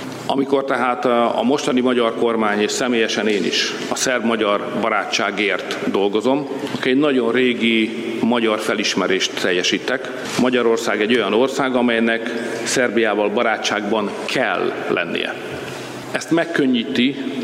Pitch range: 110-125 Hz